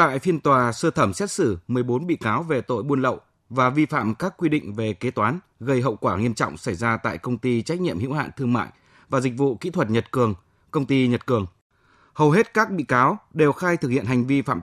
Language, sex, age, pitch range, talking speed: Vietnamese, male, 20-39, 115-150 Hz, 255 wpm